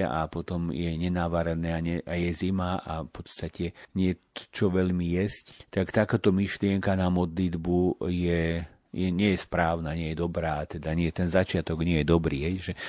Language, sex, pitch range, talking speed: Slovak, male, 85-100 Hz, 170 wpm